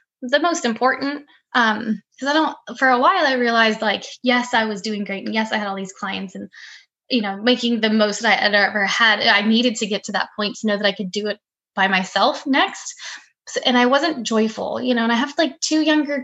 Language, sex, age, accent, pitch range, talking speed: English, female, 10-29, American, 205-265 Hz, 245 wpm